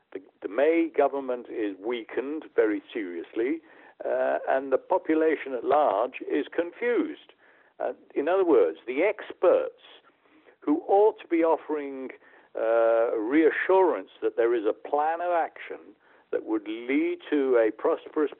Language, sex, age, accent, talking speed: English, male, 60-79, British, 135 wpm